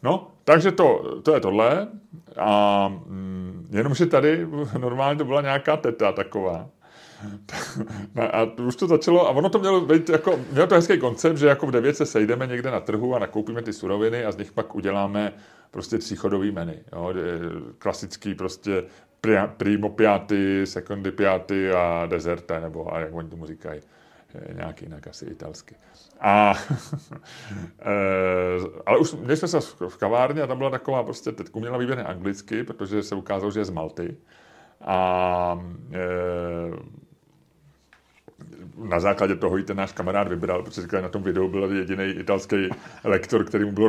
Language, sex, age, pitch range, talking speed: Czech, male, 30-49, 95-145 Hz, 155 wpm